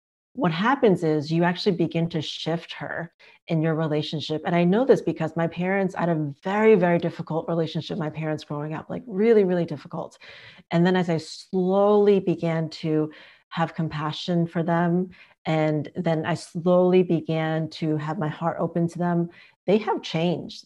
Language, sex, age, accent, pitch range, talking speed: English, female, 30-49, American, 160-190 Hz, 170 wpm